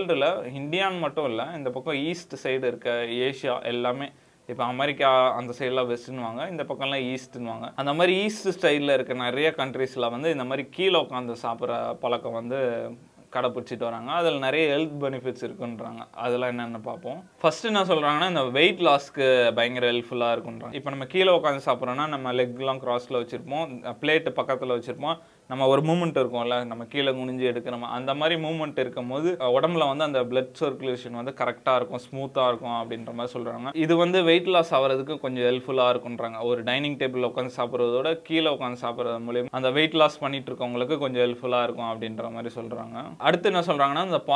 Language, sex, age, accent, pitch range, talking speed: Tamil, male, 20-39, native, 120-140 Hz, 95 wpm